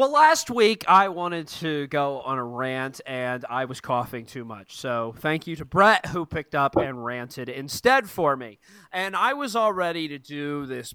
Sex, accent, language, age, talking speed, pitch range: male, American, English, 30-49, 205 wpm, 125-180 Hz